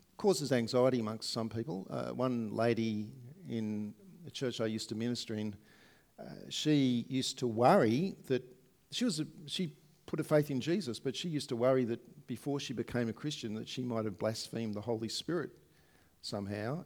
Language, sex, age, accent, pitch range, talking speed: English, male, 50-69, Australian, 105-135 Hz, 180 wpm